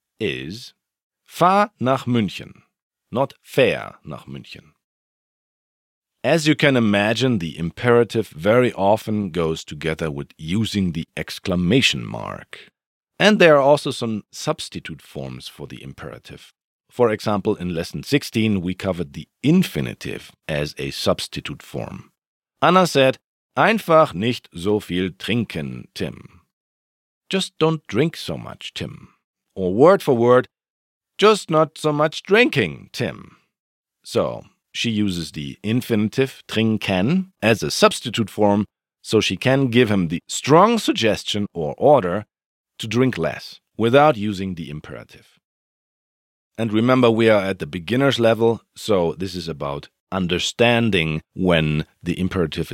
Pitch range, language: 85-130 Hz, German